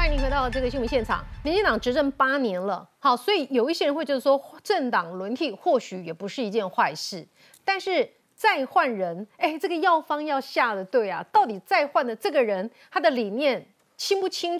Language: Chinese